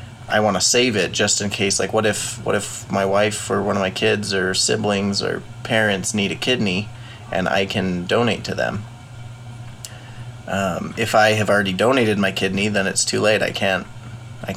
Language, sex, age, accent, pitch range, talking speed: English, male, 20-39, American, 100-120 Hz, 200 wpm